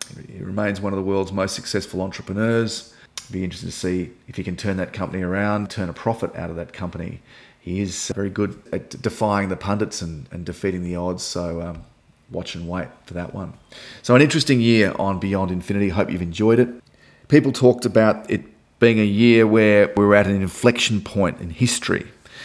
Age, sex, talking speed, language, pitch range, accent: 30-49, male, 205 wpm, English, 85-105 Hz, Australian